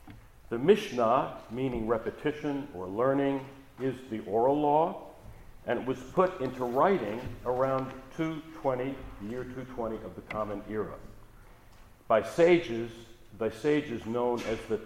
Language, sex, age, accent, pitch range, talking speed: English, male, 60-79, American, 110-140 Hz, 125 wpm